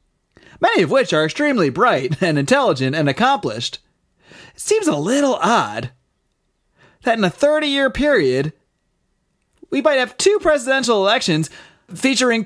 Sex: male